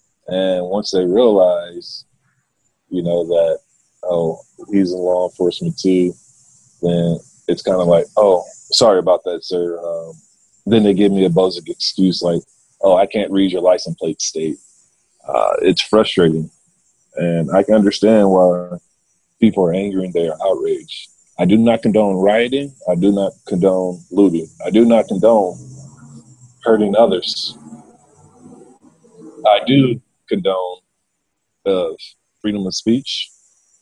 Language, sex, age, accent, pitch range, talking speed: English, male, 30-49, American, 85-105 Hz, 140 wpm